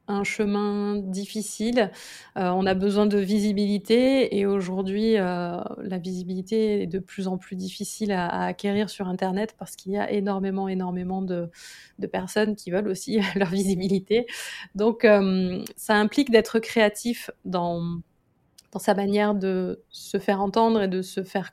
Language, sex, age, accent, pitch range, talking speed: French, female, 20-39, French, 190-215 Hz, 160 wpm